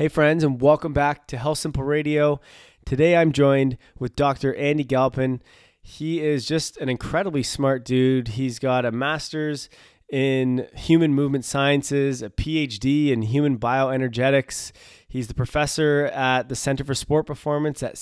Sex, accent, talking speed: male, American, 155 wpm